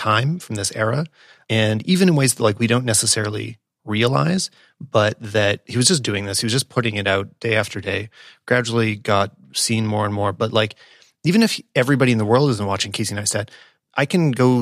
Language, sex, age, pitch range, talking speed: English, male, 30-49, 105-125 Hz, 210 wpm